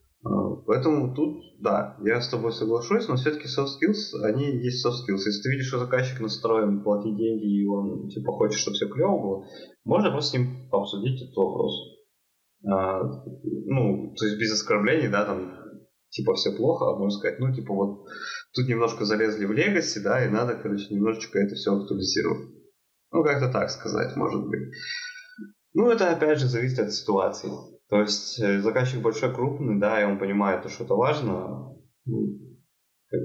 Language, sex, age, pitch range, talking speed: Russian, male, 20-39, 100-125 Hz, 170 wpm